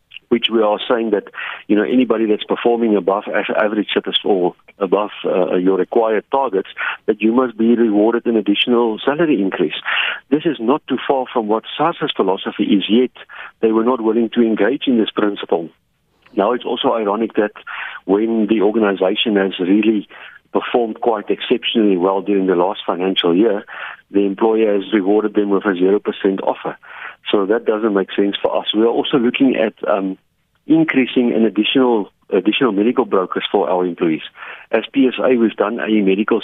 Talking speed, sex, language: 170 wpm, male, English